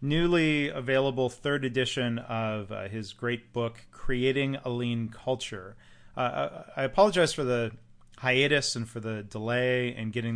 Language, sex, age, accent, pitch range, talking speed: English, male, 30-49, American, 110-130 Hz, 145 wpm